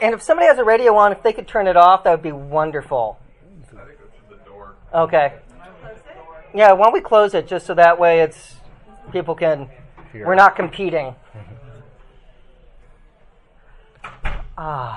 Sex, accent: male, American